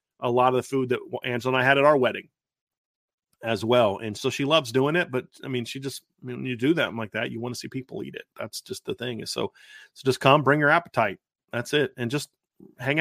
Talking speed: 265 wpm